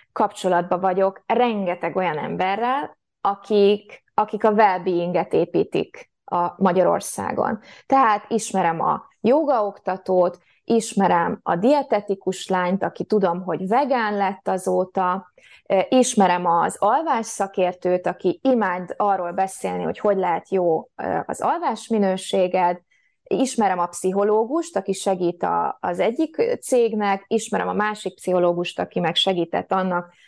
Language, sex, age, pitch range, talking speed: Hungarian, female, 20-39, 180-225 Hz, 115 wpm